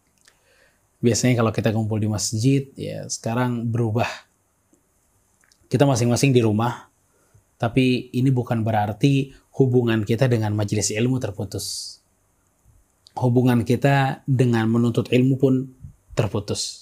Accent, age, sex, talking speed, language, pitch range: native, 20-39, male, 105 wpm, Indonesian, 105-135 Hz